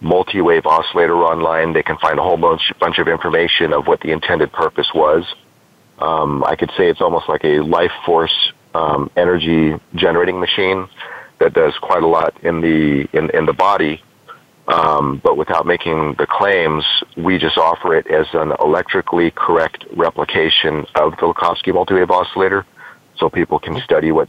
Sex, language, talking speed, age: male, English, 170 wpm, 40-59